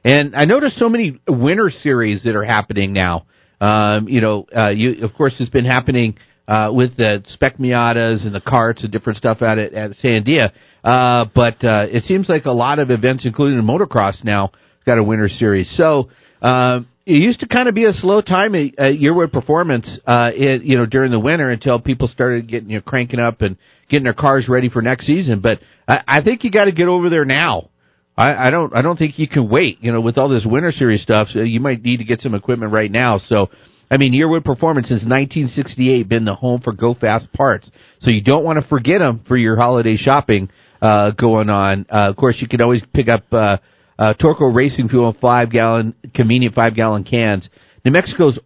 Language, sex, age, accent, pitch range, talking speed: English, male, 50-69, American, 110-135 Hz, 225 wpm